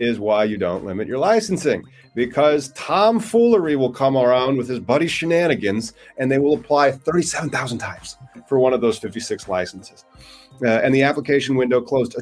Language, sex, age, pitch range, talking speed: English, male, 30-49, 95-130 Hz, 170 wpm